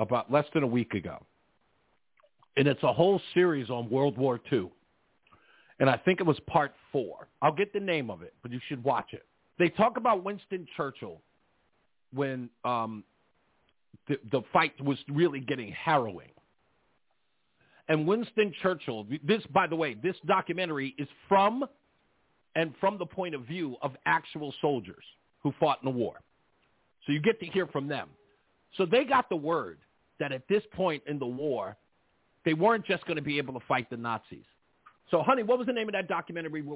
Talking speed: 180 wpm